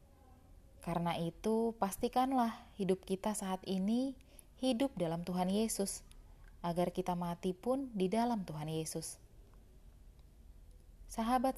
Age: 20-39